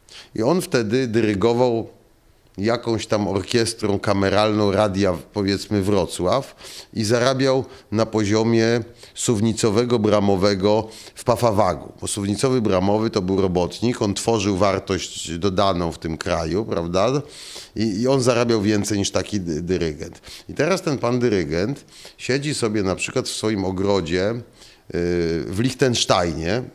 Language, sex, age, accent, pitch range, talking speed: Polish, male, 40-59, native, 95-120 Hz, 125 wpm